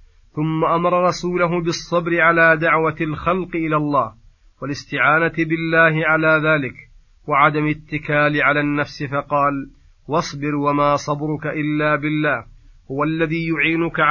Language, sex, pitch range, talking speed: Arabic, male, 145-165 Hz, 110 wpm